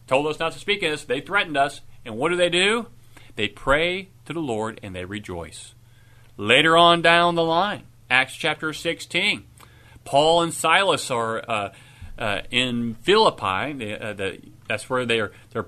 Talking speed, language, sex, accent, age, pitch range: 180 wpm, English, male, American, 40-59, 115-160 Hz